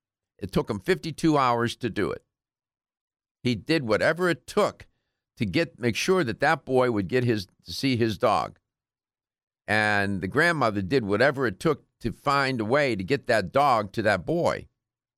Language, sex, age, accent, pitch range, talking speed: English, male, 50-69, American, 105-140 Hz, 180 wpm